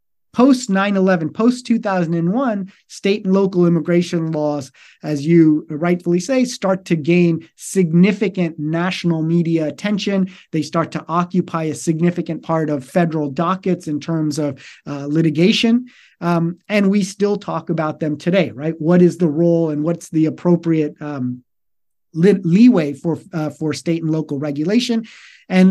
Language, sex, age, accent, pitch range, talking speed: English, male, 30-49, American, 155-195 Hz, 145 wpm